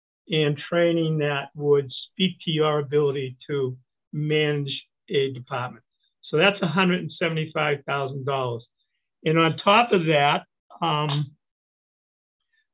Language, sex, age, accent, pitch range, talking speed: English, male, 50-69, American, 145-170 Hz, 100 wpm